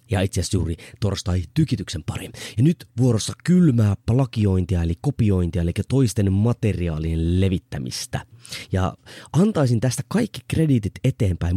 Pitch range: 95-140 Hz